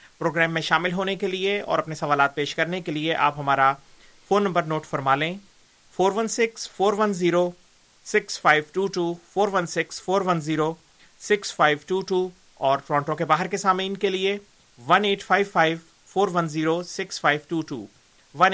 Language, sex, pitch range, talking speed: Urdu, male, 150-185 Hz, 95 wpm